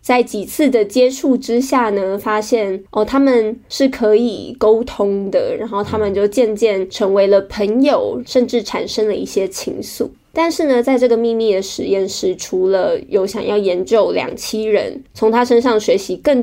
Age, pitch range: 20-39, 205-270 Hz